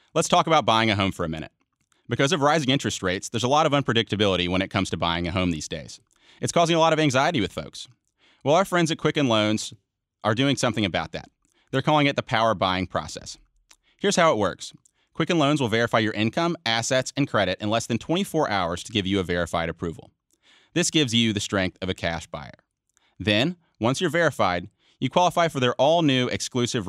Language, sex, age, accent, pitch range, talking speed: English, male, 30-49, American, 100-140 Hz, 215 wpm